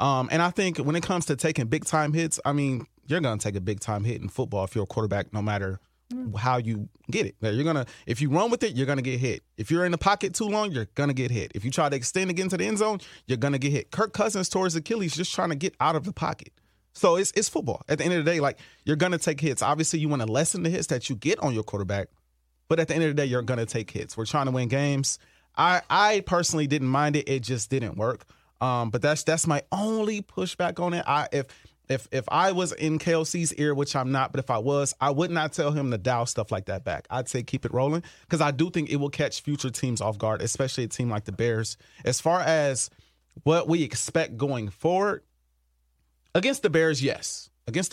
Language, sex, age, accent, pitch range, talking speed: English, male, 30-49, American, 115-165 Hz, 265 wpm